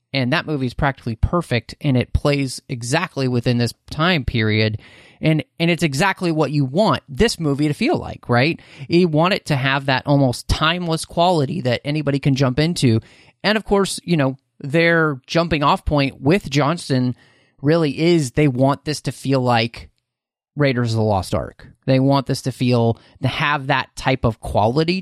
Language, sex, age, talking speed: English, male, 30-49, 180 wpm